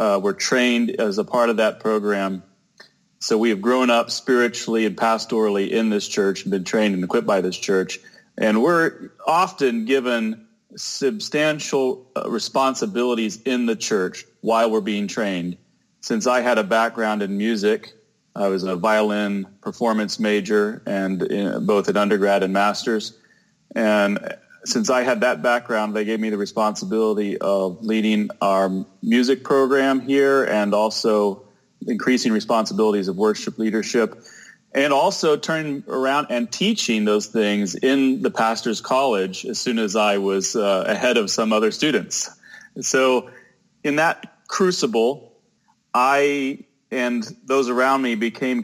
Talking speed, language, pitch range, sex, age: 145 wpm, English, 105-125 Hz, male, 30-49